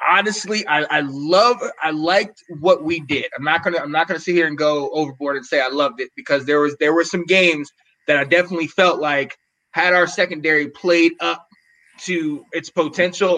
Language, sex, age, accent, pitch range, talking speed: English, male, 20-39, American, 155-185 Hz, 200 wpm